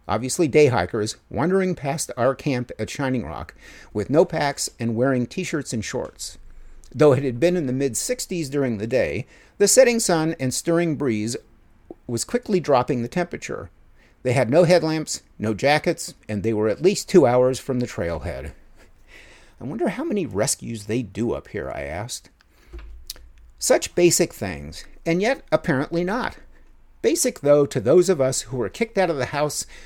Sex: male